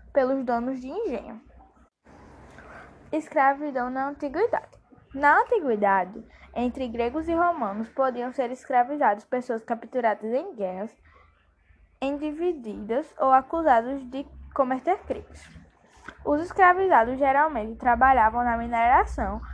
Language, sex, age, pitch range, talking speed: Portuguese, female, 10-29, 245-300 Hz, 100 wpm